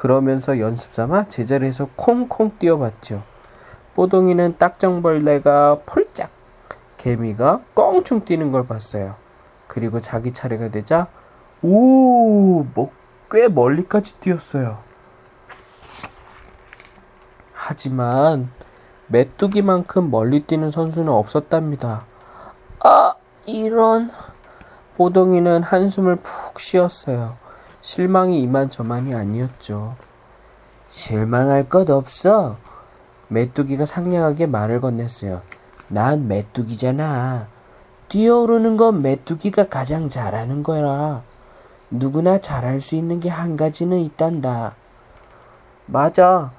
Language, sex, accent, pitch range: Korean, male, native, 120-180 Hz